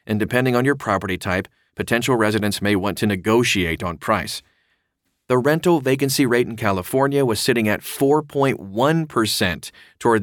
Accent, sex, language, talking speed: American, male, English, 145 wpm